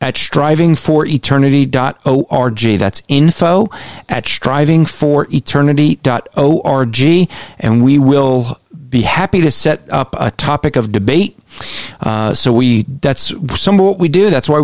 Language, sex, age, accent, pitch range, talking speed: English, male, 40-59, American, 125-150 Hz, 120 wpm